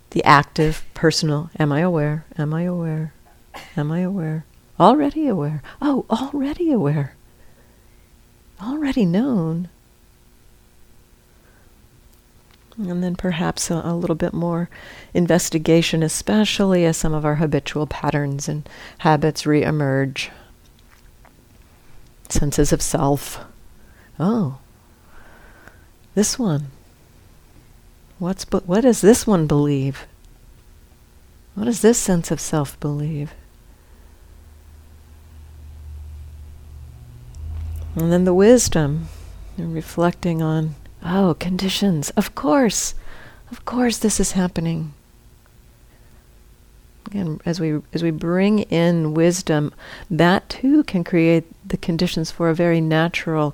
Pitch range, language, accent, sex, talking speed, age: 140-180 Hz, English, American, female, 95 wpm, 50-69